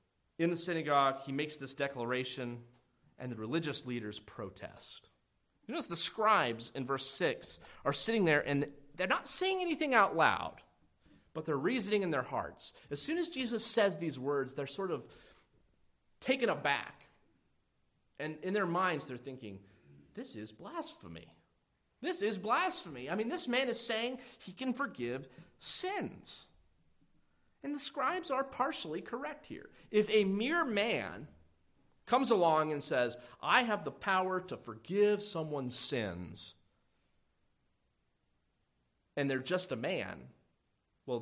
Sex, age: male, 30-49